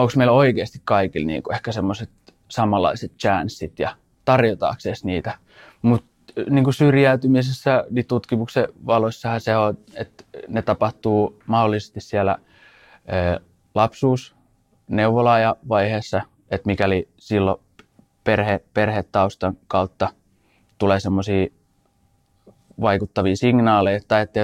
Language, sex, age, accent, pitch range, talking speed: Finnish, male, 20-39, native, 100-115 Hz, 95 wpm